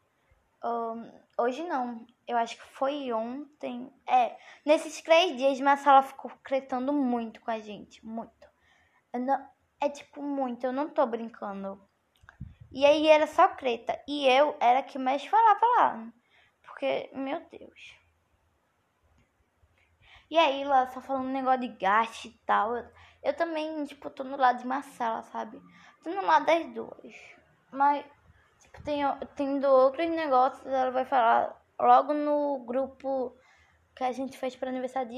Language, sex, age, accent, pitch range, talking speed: Portuguese, female, 10-29, Brazilian, 225-280 Hz, 150 wpm